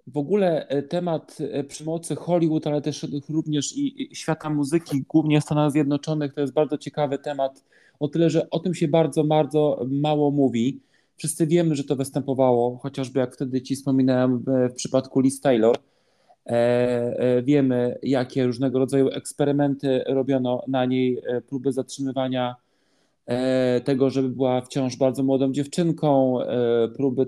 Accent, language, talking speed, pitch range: native, Polish, 135 wpm, 130-150 Hz